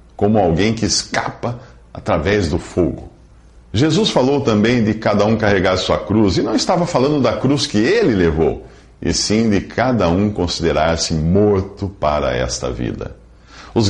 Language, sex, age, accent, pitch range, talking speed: Portuguese, male, 50-69, Brazilian, 80-110 Hz, 155 wpm